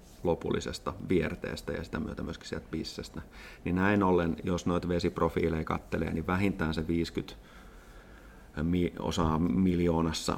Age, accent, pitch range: 30-49, native, 80-95 Hz